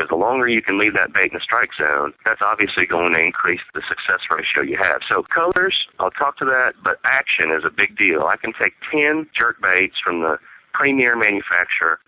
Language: English